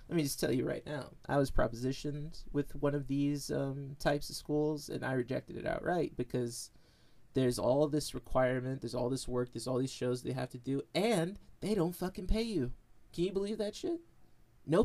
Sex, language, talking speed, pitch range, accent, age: male, English, 210 wpm, 120-145 Hz, American, 30-49